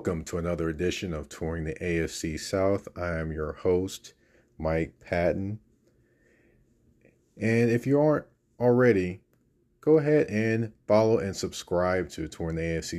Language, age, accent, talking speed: English, 30-49, American, 140 wpm